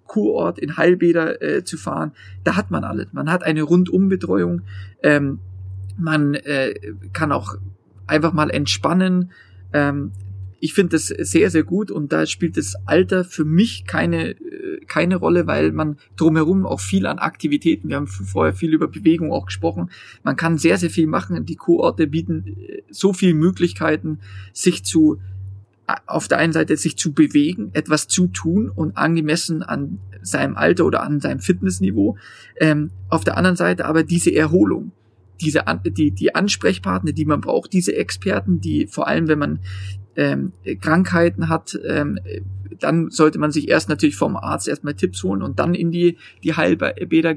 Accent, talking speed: German, 165 wpm